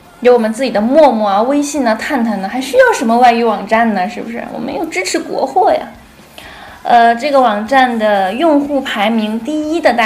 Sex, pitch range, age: female, 210-270 Hz, 20-39